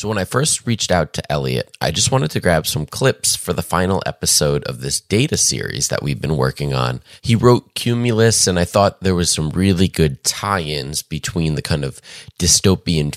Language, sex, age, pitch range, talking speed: English, male, 30-49, 75-105 Hz, 205 wpm